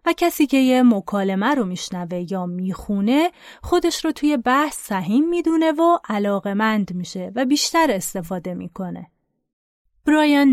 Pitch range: 195-280 Hz